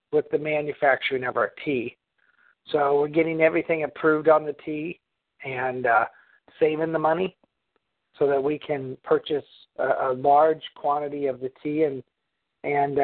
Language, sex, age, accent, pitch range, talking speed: English, male, 50-69, American, 140-160 Hz, 150 wpm